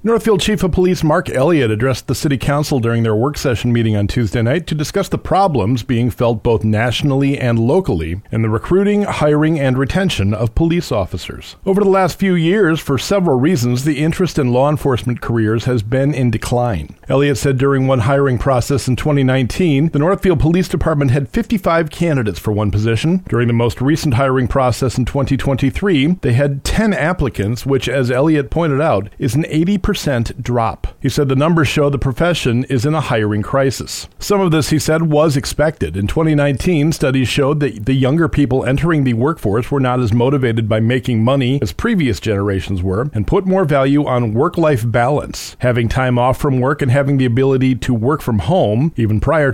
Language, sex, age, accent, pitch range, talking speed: English, male, 40-59, American, 120-155 Hz, 190 wpm